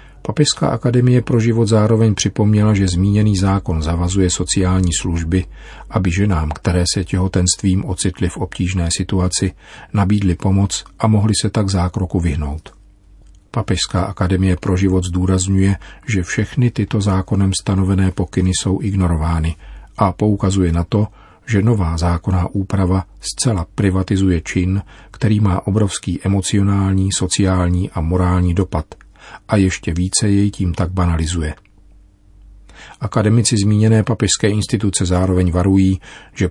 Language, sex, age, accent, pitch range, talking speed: Czech, male, 40-59, native, 90-100 Hz, 125 wpm